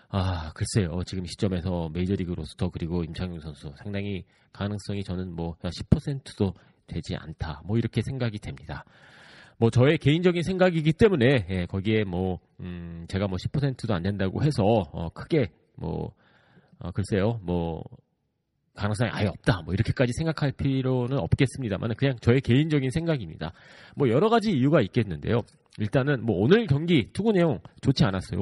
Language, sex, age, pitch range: Korean, male, 30-49, 95-140 Hz